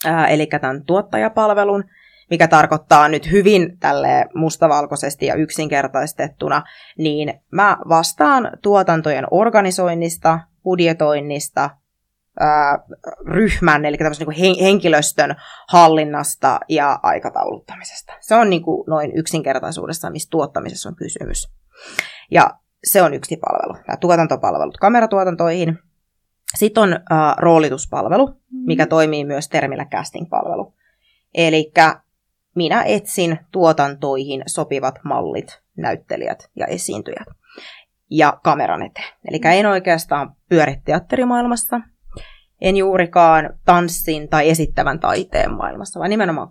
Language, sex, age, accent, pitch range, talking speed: Finnish, female, 20-39, native, 150-185 Hz, 100 wpm